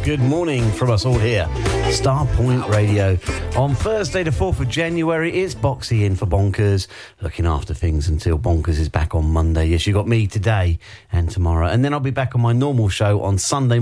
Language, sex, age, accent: English, male, 40-59, British